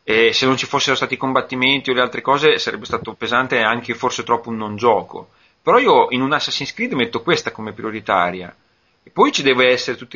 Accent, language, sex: native, Italian, male